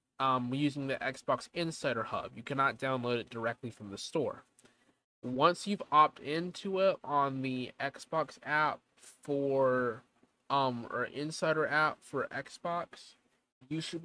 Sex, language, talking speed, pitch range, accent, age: male, English, 135 wpm, 130-165 Hz, American, 20-39